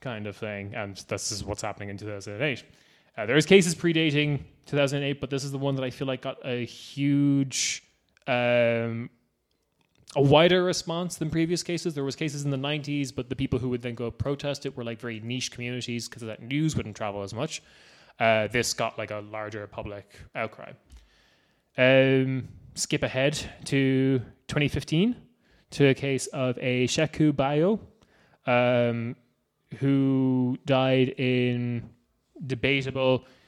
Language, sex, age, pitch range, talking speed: English, male, 20-39, 115-140 Hz, 155 wpm